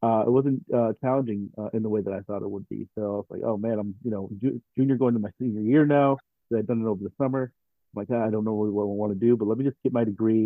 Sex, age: male, 40-59